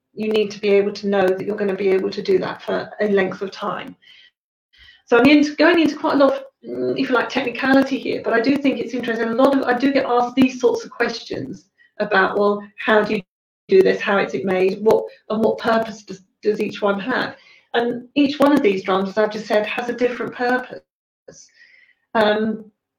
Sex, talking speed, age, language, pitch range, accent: female, 225 wpm, 40-59, English, 205-255 Hz, British